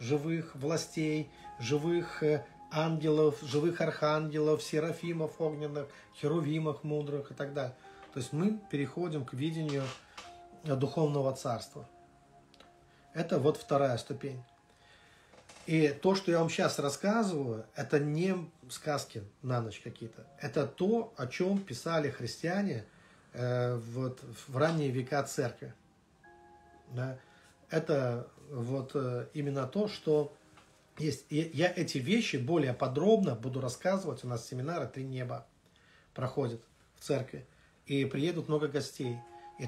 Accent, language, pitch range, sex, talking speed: native, Russian, 130-155 Hz, male, 115 wpm